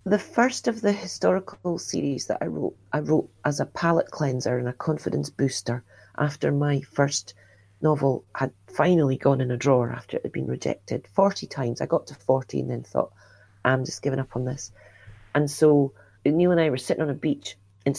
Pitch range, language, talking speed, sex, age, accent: 105-155 Hz, English, 200 wpm, female, 40-59, British